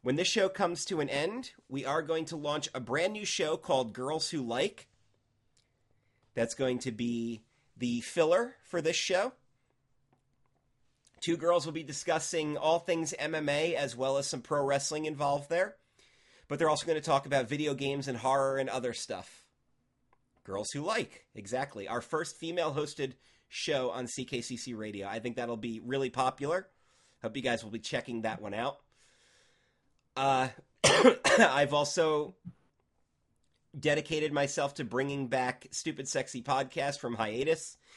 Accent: American